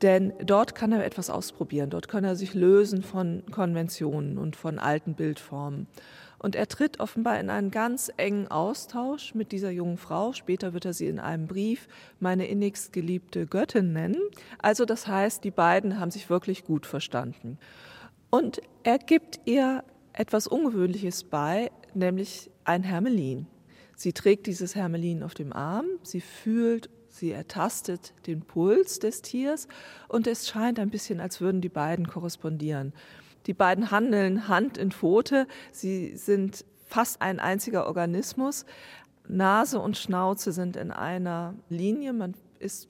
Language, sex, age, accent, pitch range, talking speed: German, female, 40-59, German, 175-220 Hz, 150 wpm